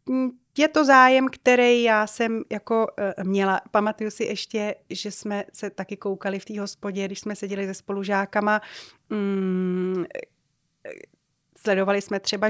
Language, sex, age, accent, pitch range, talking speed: Czech, female, 30-49, native, 210-250 Hz, 130 wpm